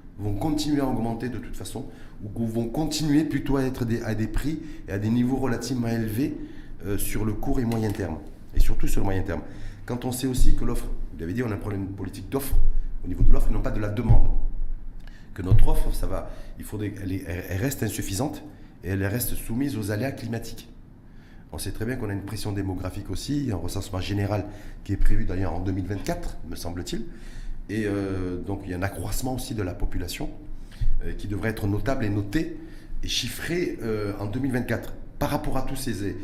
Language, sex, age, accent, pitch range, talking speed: French, male, 30-49, French, 95-120 Hz, 215 wpm